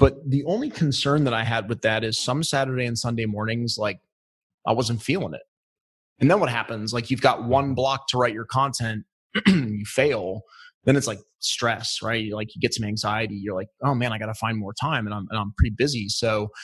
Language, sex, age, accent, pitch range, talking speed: English, male, 30-49, American, 115-140 Hz, 225 wpm